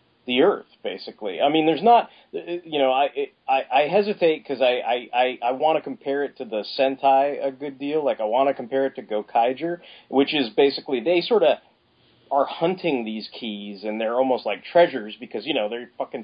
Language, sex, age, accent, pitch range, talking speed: English, male, 30-49, American, 125-170 Hz, 210 wpm